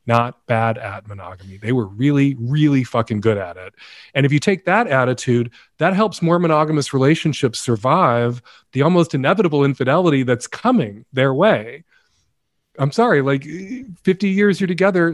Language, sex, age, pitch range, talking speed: English, male, 40-59, 130-165 Hz, 155 wpm